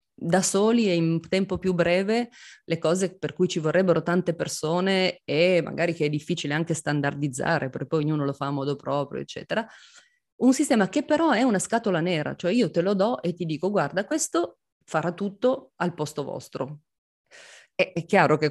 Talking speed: 190 wpm